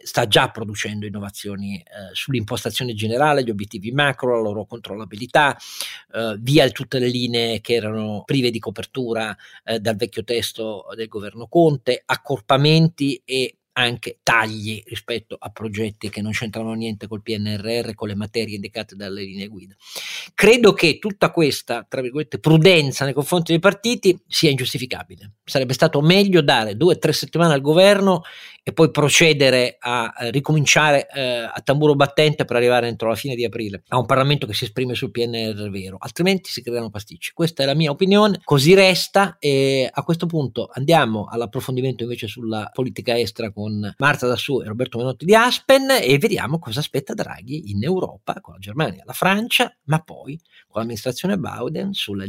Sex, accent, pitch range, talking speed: male, native, 110-150 Hz, 170 wpm